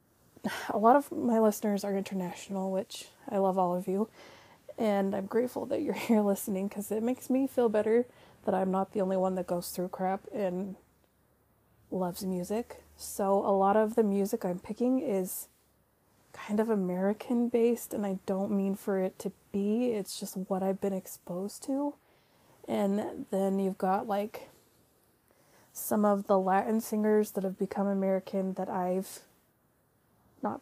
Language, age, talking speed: English, 20-39, 165 wpm